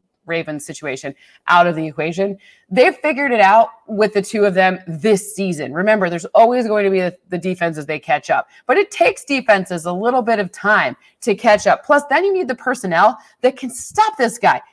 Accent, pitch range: American, 165-220 Hz